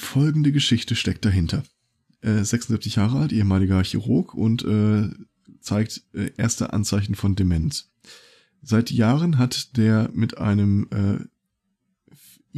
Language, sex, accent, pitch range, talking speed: German, male, German, 105-120 Hz, 120 wpm